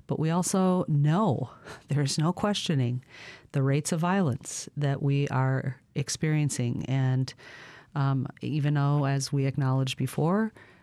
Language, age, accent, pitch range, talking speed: English, 40-59, American, 130-150 Hz, 135 wpm